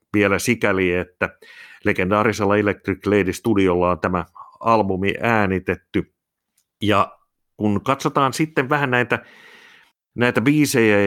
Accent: native